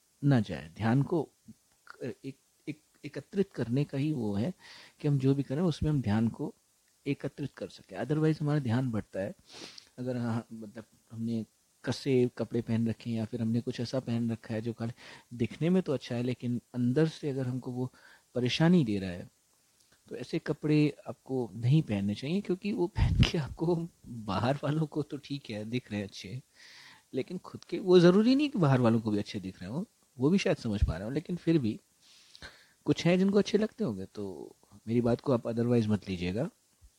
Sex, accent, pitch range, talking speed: male, native, 110-150 Hz, 200 wpm